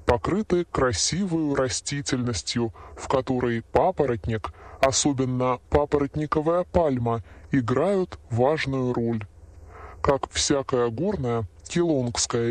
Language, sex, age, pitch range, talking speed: Russian, female, 20-39, 115-160 Hz, 75 wpm